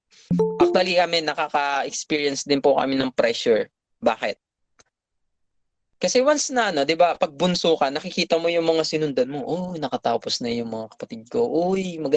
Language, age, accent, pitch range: Filipino, 20-39, native, 140-210 Hz